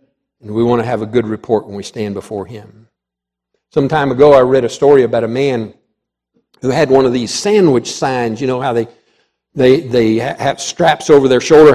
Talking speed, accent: 210 wpm, American